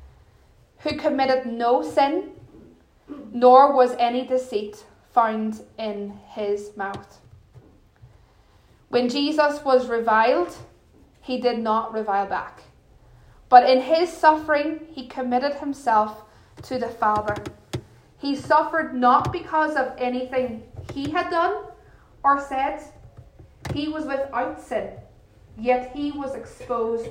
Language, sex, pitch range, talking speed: English, female, 210-275 Hz, 110 wpm